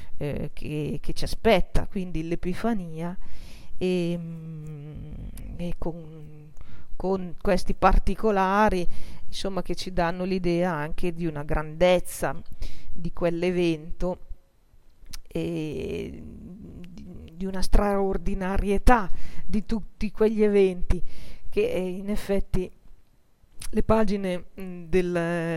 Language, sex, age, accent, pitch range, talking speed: Italian, female, 40-59, native, 160-185 Hz, 85 wpm